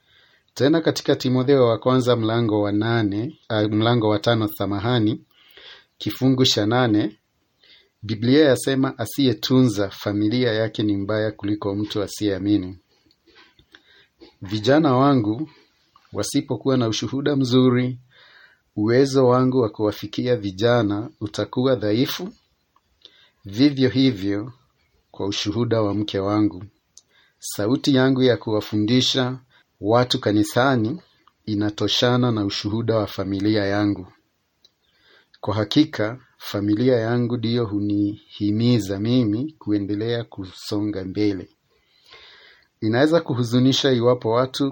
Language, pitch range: Swahili, 105-130 Hz